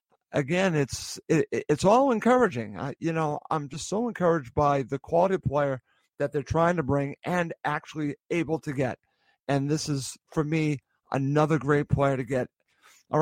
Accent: American